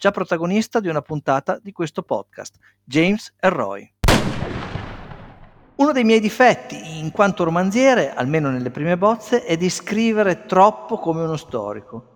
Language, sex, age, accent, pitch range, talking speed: Italian, male, 50-69, native, 150-225 Hz, 140 wpm